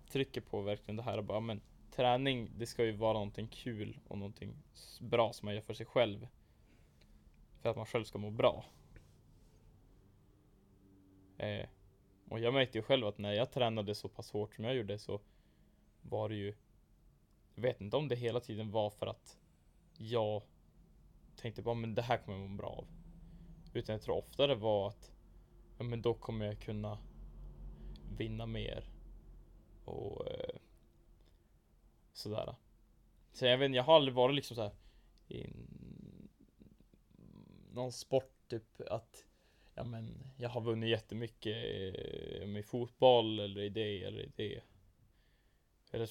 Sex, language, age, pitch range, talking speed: male, Swedish, 10-29, 100-120 Hz, 155 wpm